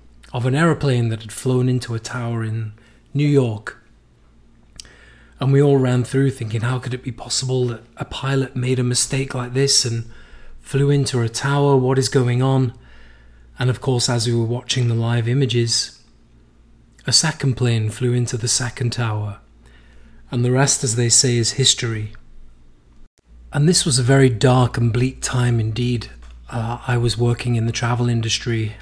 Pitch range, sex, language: 100-125 Hz, male, English